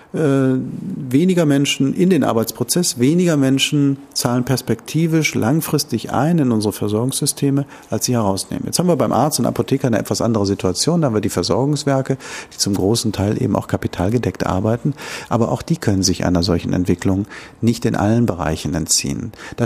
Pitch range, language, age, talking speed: 100-135 Hz, German, 50-69, 170 wpm